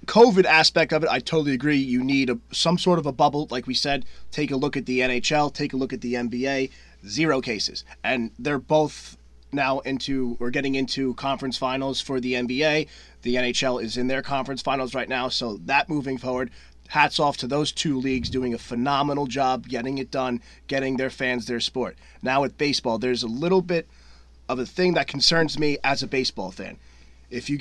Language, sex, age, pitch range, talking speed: English, male, 30-49, 125-145 Hz, 205 wpm